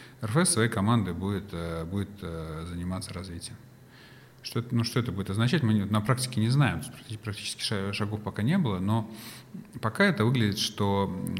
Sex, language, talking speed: male, Russian, 145 wpm